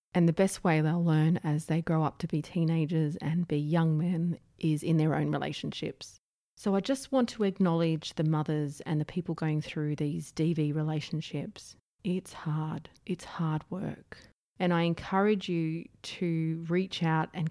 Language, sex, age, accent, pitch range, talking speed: English, female, 30-49, Australian, 155-180 Hz, 175 wpm